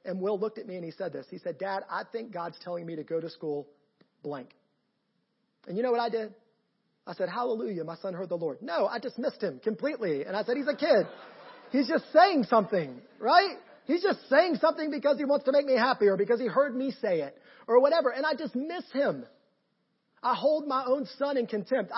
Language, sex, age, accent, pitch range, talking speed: English, male, 40-59, American, 195-260 Hz, 225 wpm